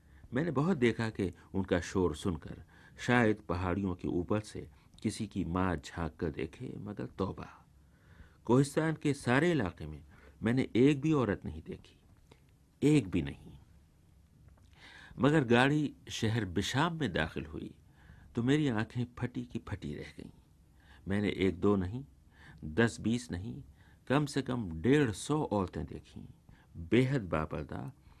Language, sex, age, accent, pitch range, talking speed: Hindi, male, 60-79, native, 85-120 Hz, 140 wpm